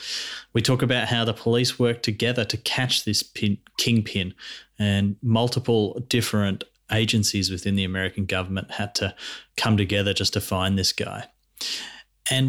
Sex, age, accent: male, 30-49, Australian